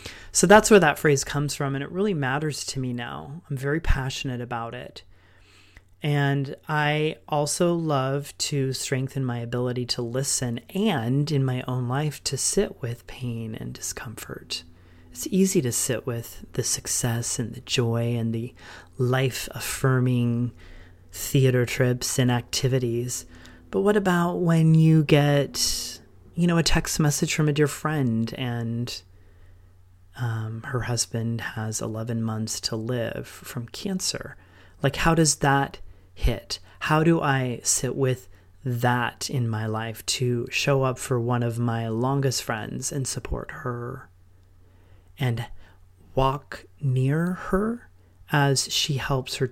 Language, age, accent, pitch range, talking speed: English, 30-49, American, 100-140 Hz, 145 wpm